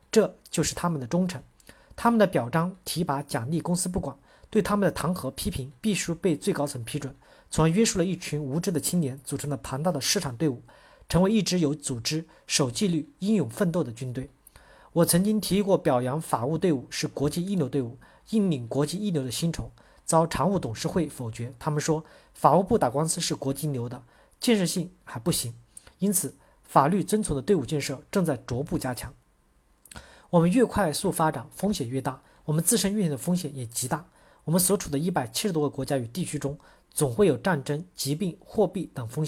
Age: 40-59